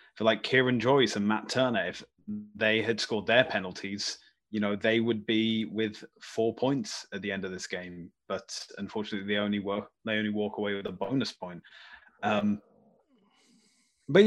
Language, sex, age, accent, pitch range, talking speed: English, male, 20-39, British, 105-130 Hz, 175 wpm